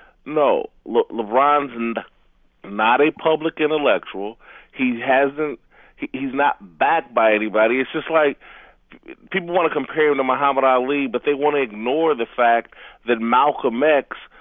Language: English